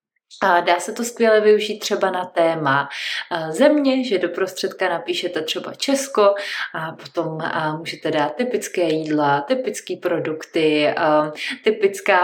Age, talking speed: 20-39, 120 wpm